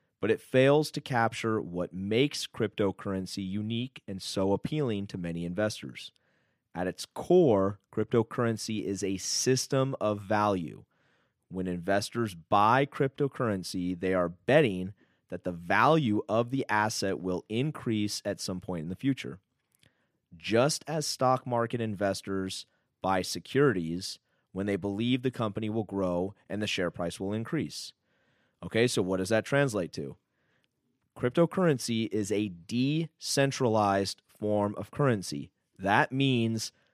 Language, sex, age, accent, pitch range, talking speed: English, male, 30-49, American, 95-130 Hz, 130 wpm